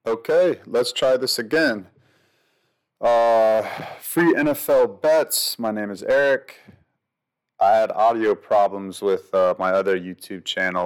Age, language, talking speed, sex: 30-49, English, 125 wpm, male